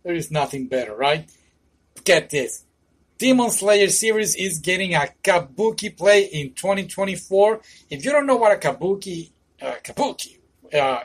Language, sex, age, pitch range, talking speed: English, male, 40-59, 150-205 Hz, 145 wpm